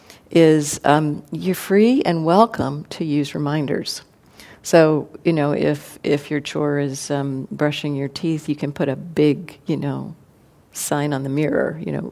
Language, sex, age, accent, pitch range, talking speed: English, female, 50-69, American, 150-205 Hz, 170 wpm